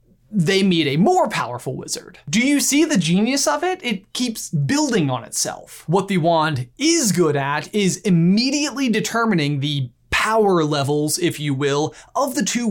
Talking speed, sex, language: 170 wpm, male, English